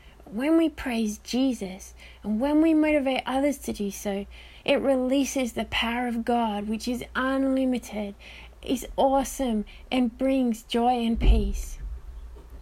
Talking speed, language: 135 wpm, English